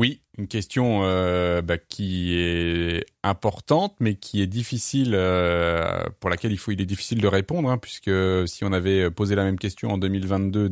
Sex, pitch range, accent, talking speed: male, 90-110 Hz, French, 185 wpm